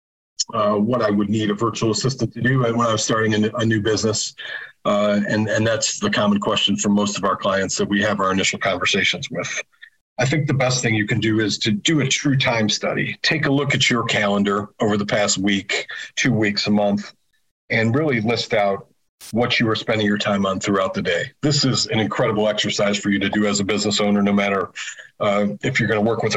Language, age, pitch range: English, 40-59, 105-120 Hz